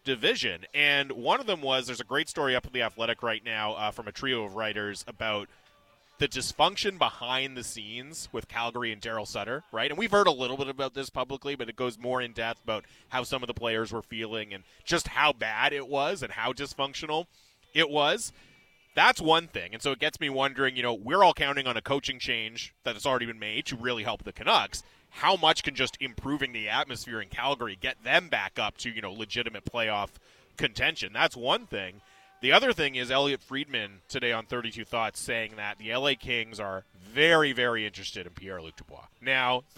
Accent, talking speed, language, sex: American, 215 wpm, English, male